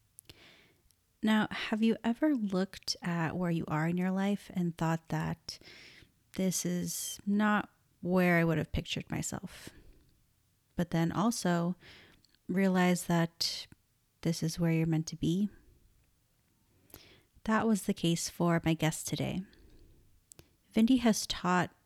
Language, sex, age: English, female, 30-49